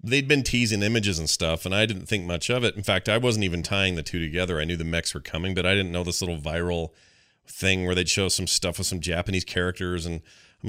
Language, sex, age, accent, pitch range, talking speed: English, male, 40-59, American, 100-160 Hz, 265 wpm